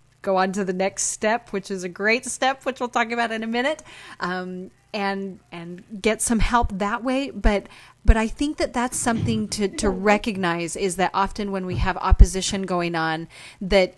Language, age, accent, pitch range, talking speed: English, 30-49, American, 180-225 Hz, 195 wpm